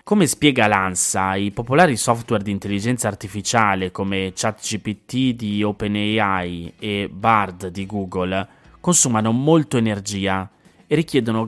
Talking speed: 115 wpm